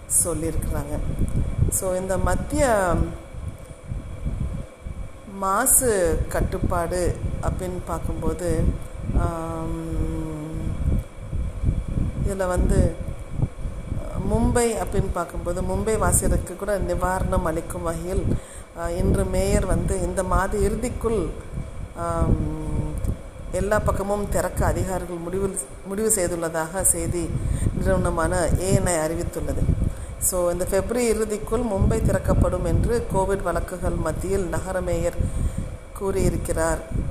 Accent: native